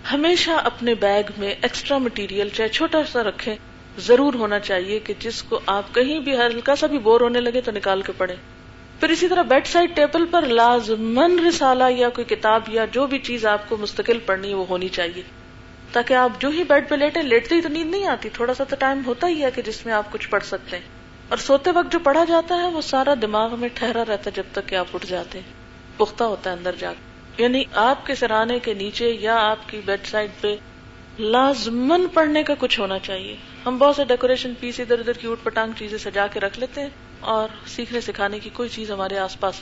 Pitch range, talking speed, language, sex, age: 210-260 Hz, 225 wpm, Urdu, female, 40-59